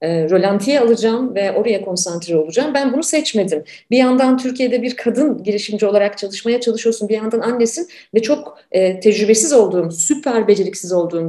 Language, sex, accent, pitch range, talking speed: Turkish, female, native, 185-255 Hz, 155 wpm